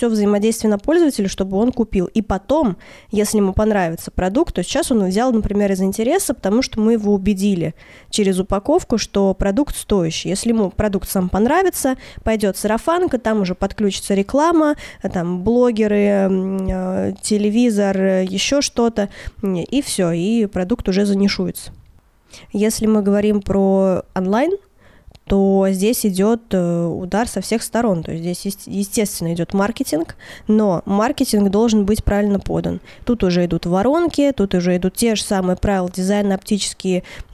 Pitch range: 190-225 Hz